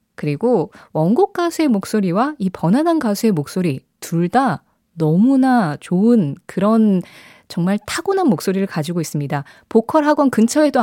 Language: Korean